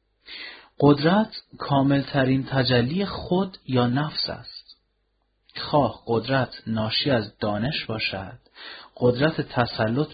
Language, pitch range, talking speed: Persian, 110-145 Hz, 90 wpm